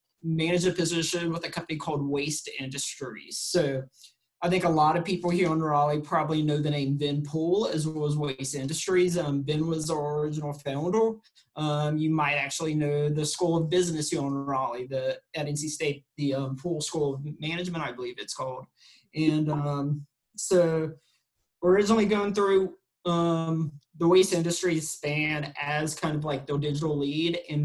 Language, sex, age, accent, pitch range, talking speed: English, male, 30-49, American, 145-170 Hz, 180 wpm